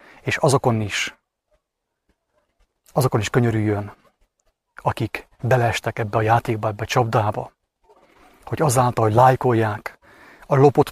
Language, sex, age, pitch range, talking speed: English, male, 30-49, 115-150 Hz, 110 wpm